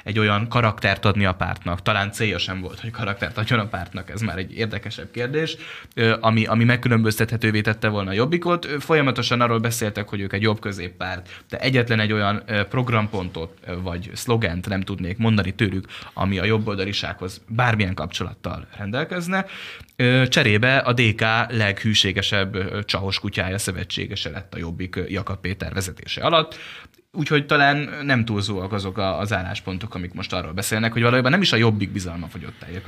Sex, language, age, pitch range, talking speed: male, Hungarian, 10-29, 95-120 Hz, 155 wpm